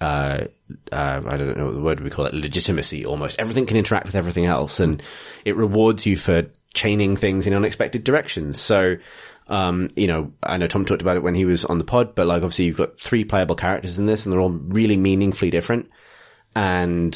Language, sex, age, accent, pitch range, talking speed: English, male, 20-39, British, 85-100 Hz, 215 wpm